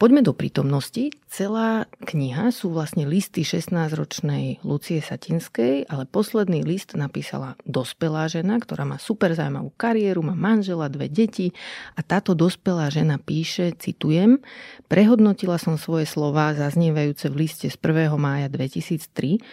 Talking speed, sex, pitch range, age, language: 130 wpm, female, 150-195 Hz, 40-59, Slovak